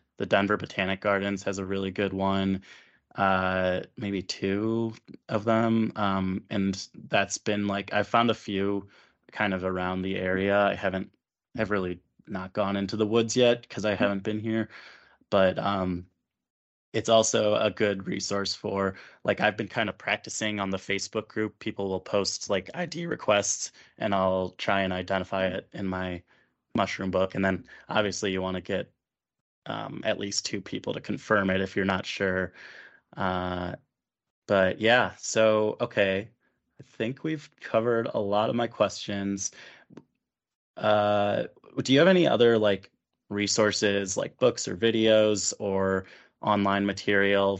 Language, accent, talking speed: English, American, 160 wpm